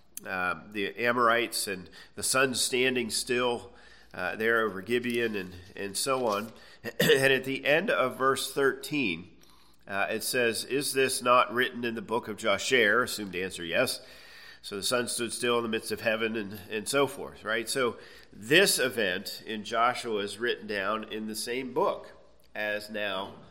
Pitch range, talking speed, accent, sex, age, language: 105-135 Hz, 170 wpm, American, male, 40-59, English